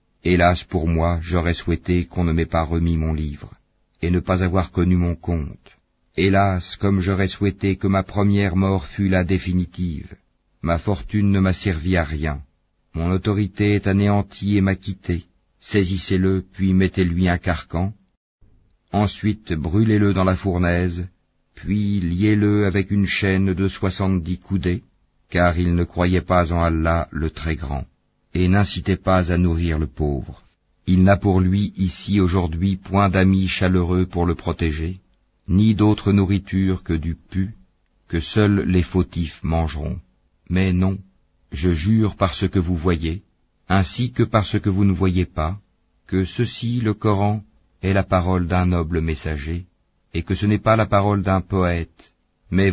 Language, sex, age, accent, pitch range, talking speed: English, male, 50-69, French, 85-100 Hz, 160 wpm